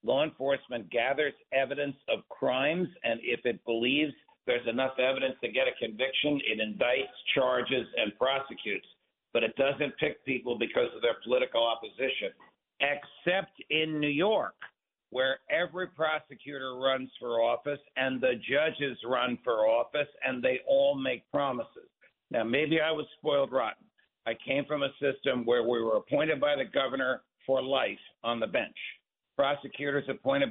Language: English